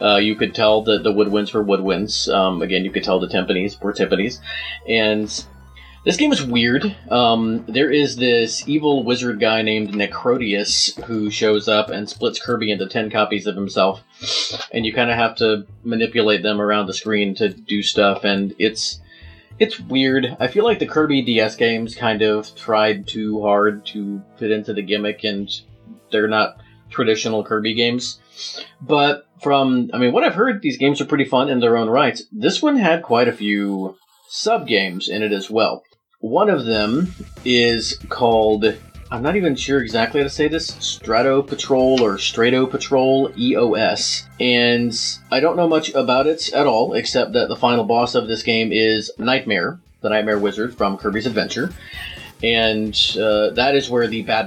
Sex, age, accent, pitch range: male, 30-49, American, 105-125 Hz